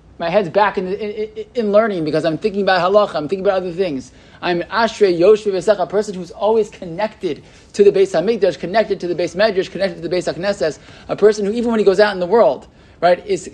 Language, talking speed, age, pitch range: English, 235 wpm, 20-39, 155-200 Hz